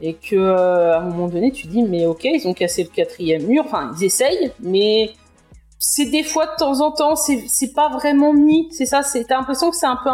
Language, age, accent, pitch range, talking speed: French, 30-49, French, 200-270 Hz, 235 wpm